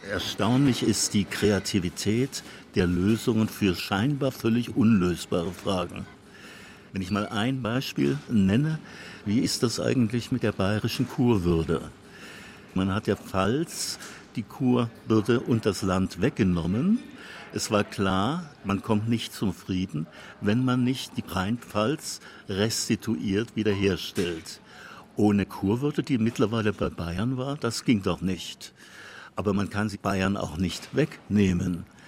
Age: 60-79